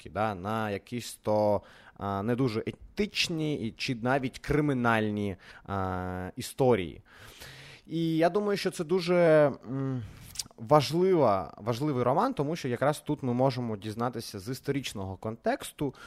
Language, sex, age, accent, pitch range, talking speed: Ukrainian, male, 20-39, native, 105-140 Hz, 105 wpm